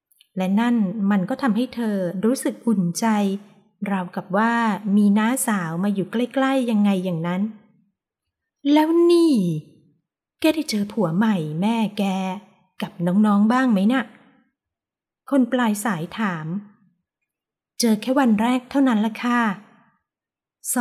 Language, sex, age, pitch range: Thai, female, 20-39, 195-245 Hz